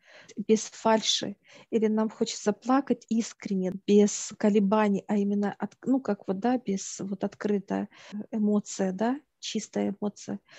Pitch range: 200-220 Hz